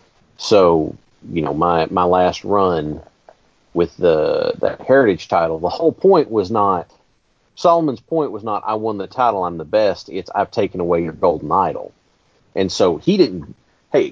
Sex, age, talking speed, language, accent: male, 40-59, 170 wpm, English, American